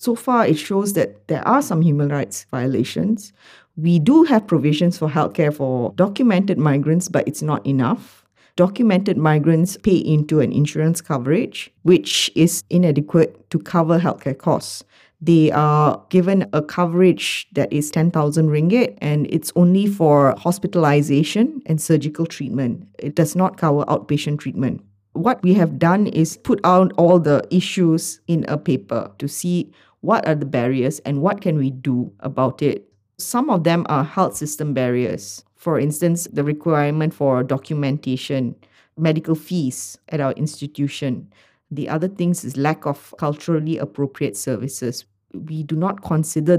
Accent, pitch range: Malaysian, 140-175 Hz